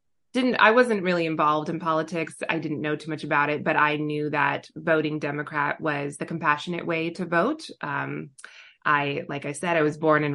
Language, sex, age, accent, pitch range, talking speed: English, female, 20-39, American, 155-190 Hz, 205 wpm